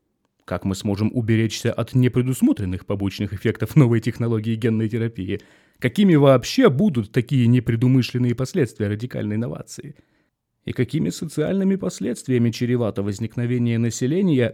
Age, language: 30-49, Russian